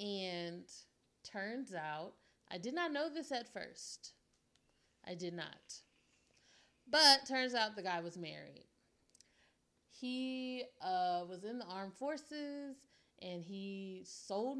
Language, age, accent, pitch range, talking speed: English, 30-49, American, 175-235 Hz, 125 wpm